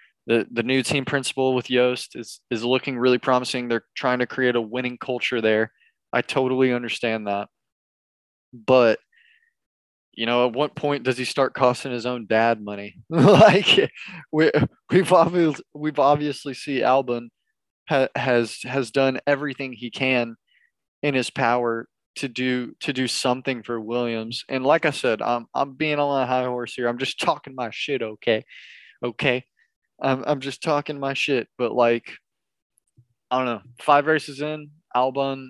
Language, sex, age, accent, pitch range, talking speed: English, male, 20-39, American, 120-145 Hz, 160 wpm